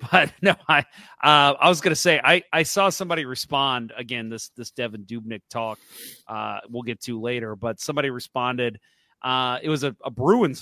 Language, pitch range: English, 125-190 Hz